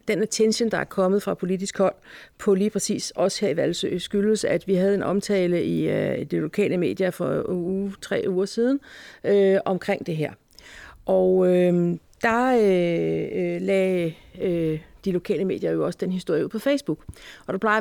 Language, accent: Danish, native